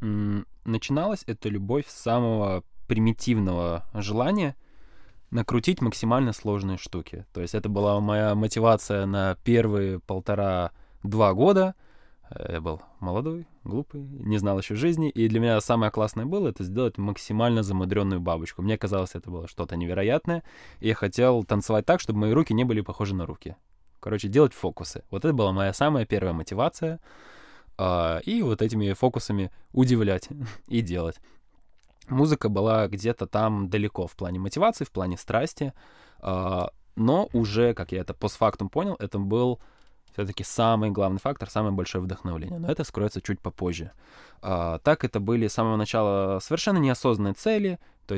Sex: male